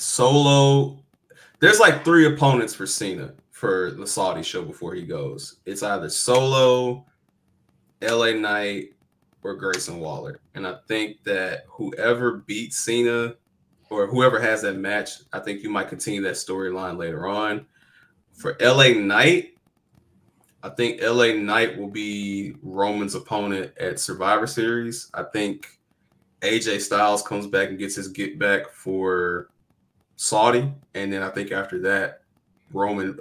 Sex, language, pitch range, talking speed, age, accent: male, English, 100-125 Hz, 140 wpm, 20-39, American